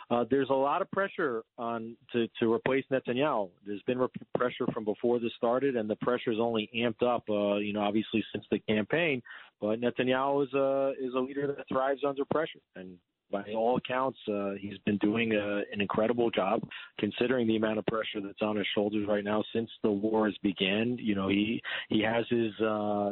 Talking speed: 200 wpm